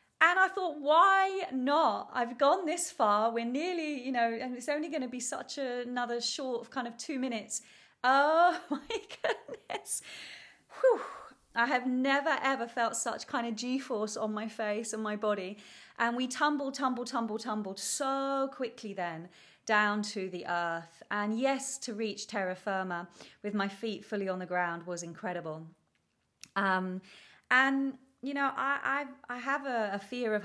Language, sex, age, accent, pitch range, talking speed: English, female, 30-49, British, 195-270 Hz, 170 wpm